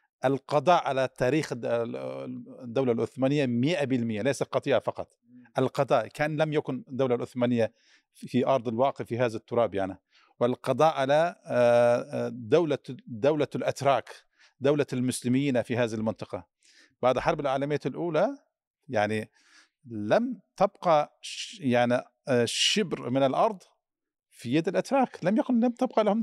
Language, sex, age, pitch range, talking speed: Arabic, male, 50-69, 125-185 Hz, 120 wpm